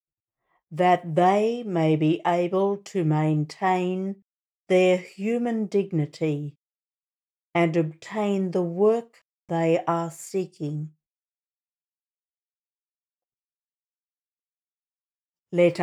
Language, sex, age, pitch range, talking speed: English, female, 60-79, 160-195 Hz, 70 wpm